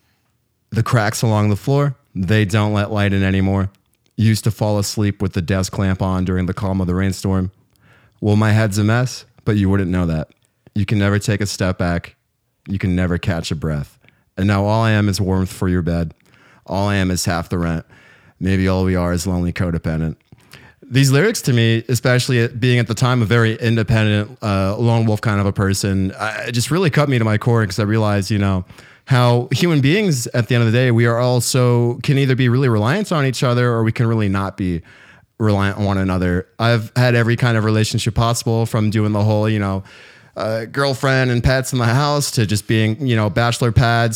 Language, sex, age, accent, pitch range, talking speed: English, male, 30-49, American, 105-125 Hz, 220 wpm